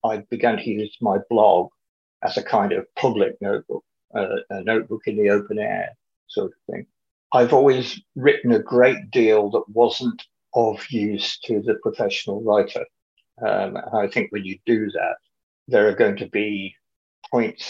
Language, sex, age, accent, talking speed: English, male, 50-69, British, 165 wpm